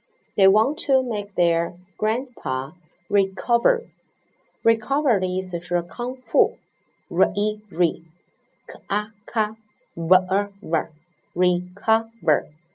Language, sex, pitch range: Chinese, female, 175-245 Hz